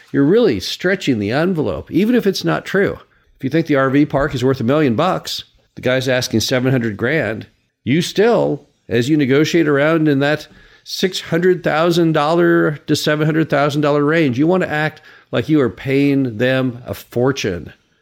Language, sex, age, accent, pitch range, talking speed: English, male, 50-69, American, 125-160 Hz, 165 wpm